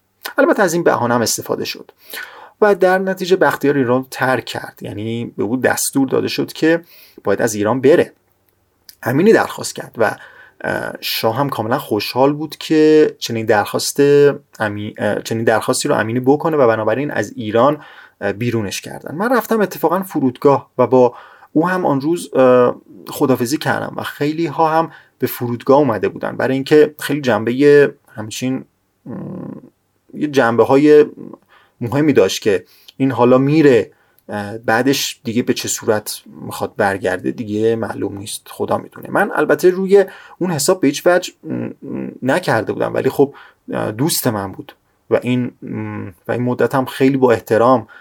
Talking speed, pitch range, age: 145 wpm, 115-155 Hz, 30-49